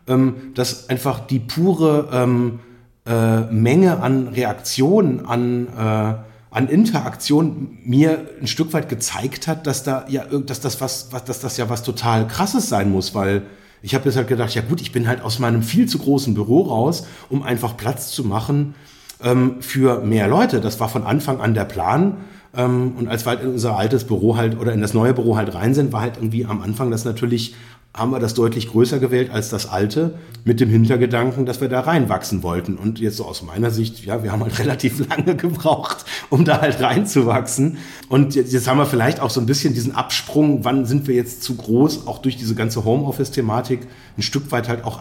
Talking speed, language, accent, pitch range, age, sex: 205 wpm, German, German, 110-135 Hz, 30-49, male